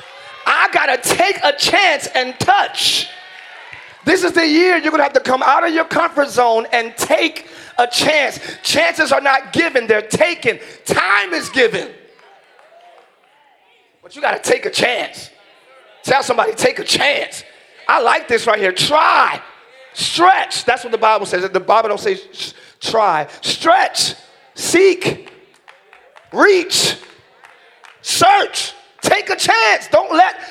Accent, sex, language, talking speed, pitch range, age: American, male, English, 145 wpm, 300-385 Hz, 40-59